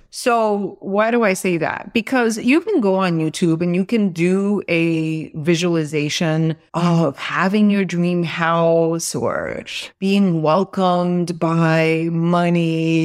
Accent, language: American, English